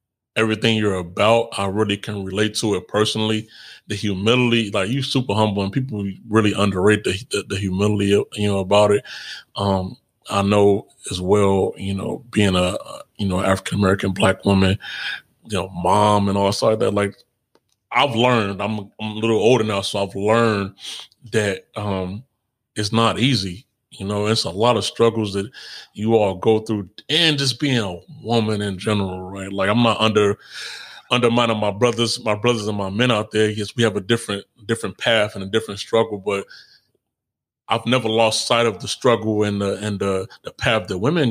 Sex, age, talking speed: male, 30-49, 190 wpm